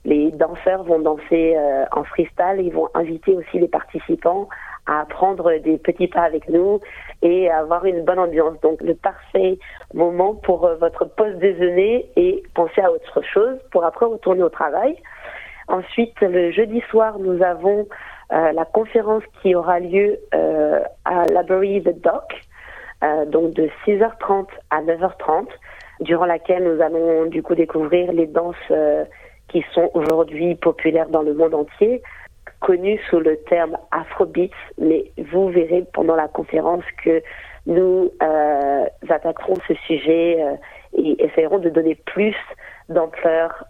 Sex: female